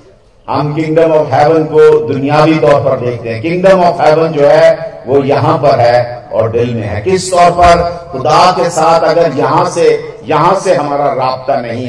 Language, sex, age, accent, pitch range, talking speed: Hindi, male, 50-69, native, 135-170 Hz, 185 wpm